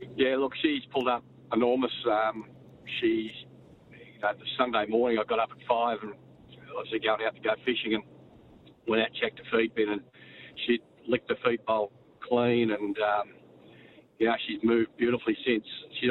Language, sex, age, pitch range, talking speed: English, male, 50-69, 110-125 Hz, 180 wpm